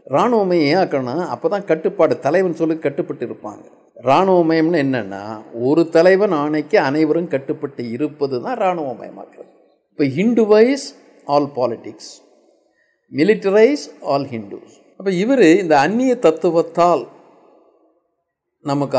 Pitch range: 125-185 Hz